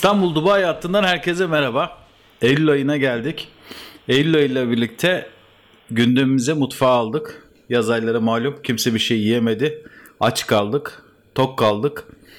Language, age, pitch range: Turkish, 50-69, 120-150 Hz